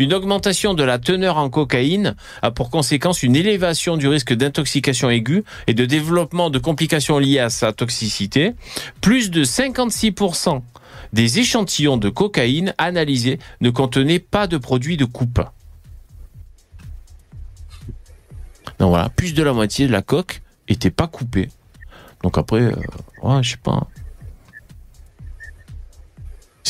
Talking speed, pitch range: 135 wpm, 105-150 Hz